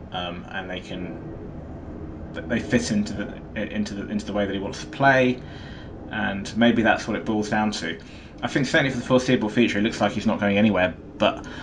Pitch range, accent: 95-120 Hz, British